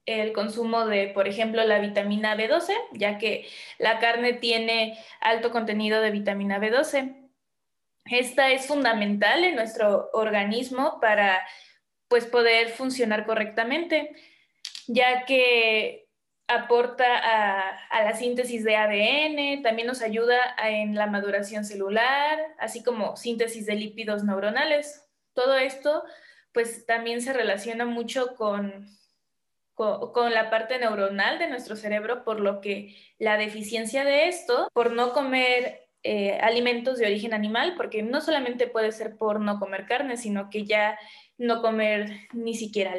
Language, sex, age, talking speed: Spanish, female, 20-39, 135 wpm